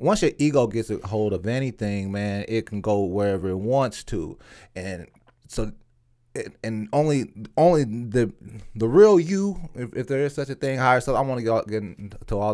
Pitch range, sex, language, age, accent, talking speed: 105-125 Hz, male, English, 30-49, American, 190 wpm